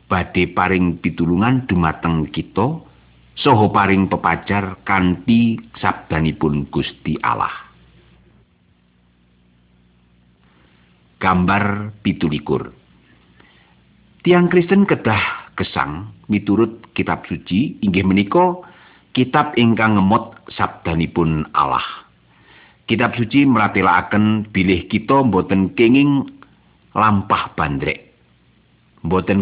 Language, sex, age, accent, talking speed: English, male, 50-69, Indonesian, 80 wpm